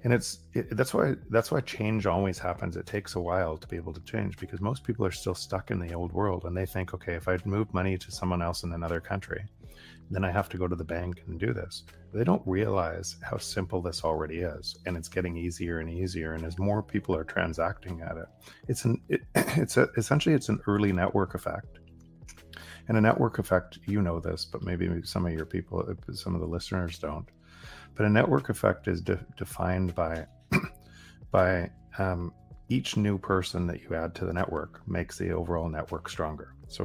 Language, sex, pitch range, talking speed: Bulgarian, male, 85-100 Hz, 215 wpm